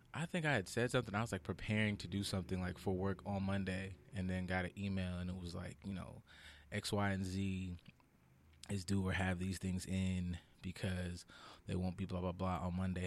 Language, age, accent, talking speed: English, 20-39, American, 225 wpm